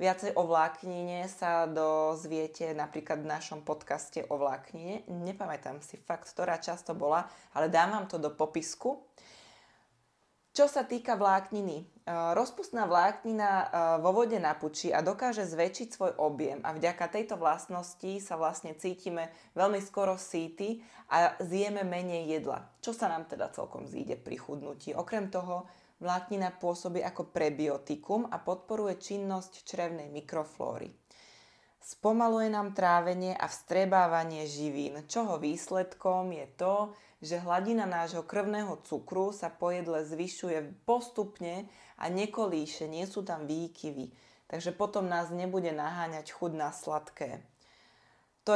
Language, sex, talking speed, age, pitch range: Slovak, female, 130 wpm, 20-39, 160-195 Hz